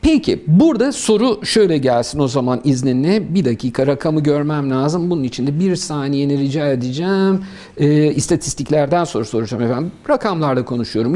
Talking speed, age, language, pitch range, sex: 145 wpm, 50-69, Turkish, 135-185 Hz, male